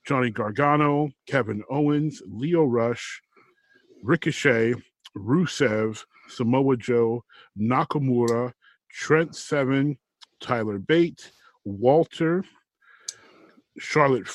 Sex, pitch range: male, 115-150 Hz